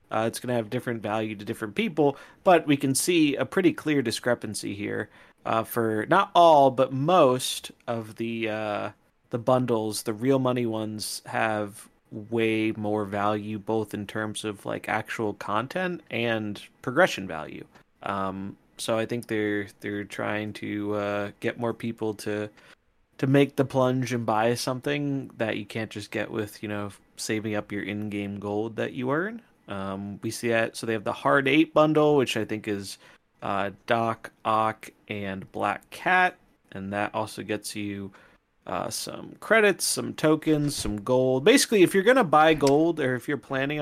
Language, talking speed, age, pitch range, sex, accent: English, 175 wpm, 30-49, 105-135 Hz, male, American